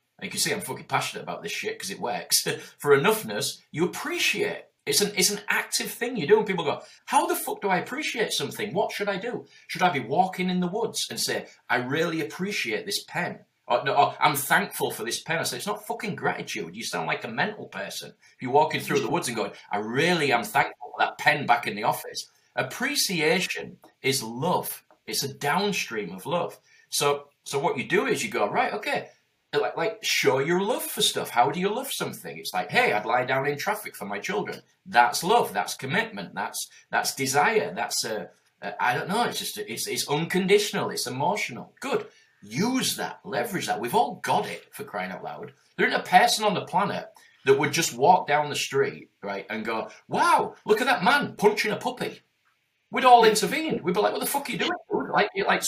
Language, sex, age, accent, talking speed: English, male, 30-49, British, 220 wpm